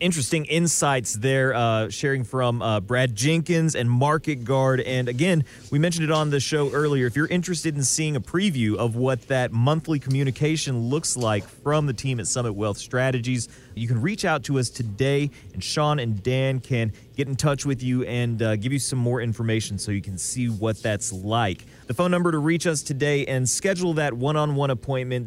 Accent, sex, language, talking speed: American, male, English, 200 wpm